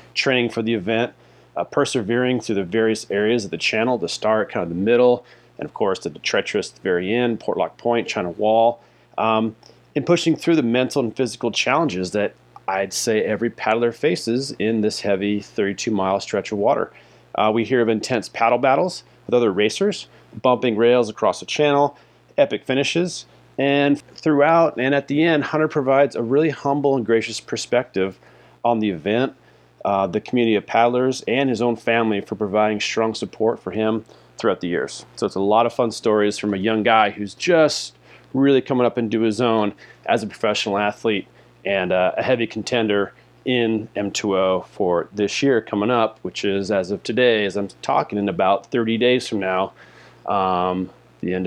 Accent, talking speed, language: American, 180 wpm, English